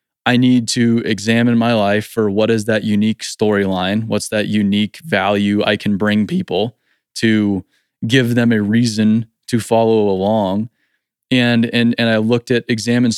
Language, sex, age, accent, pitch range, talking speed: English, male, 20-39, American, 105-125 Hz, 160 wpm